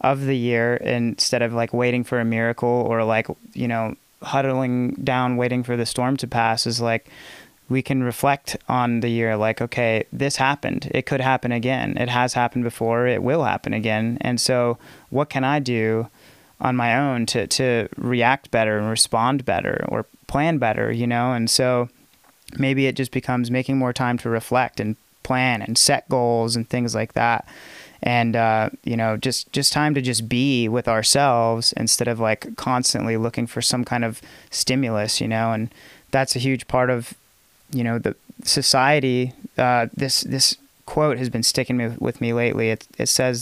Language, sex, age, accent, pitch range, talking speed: English, male, 30-49, American, 115-130 Hz, 185 wpm